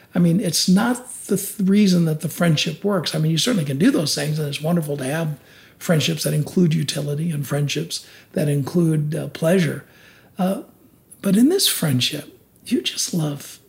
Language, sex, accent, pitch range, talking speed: English, male, American, 145-180 Hz, 180 wpm